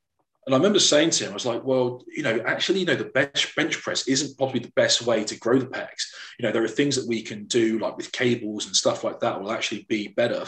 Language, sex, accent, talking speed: English, male, British, 270 wpm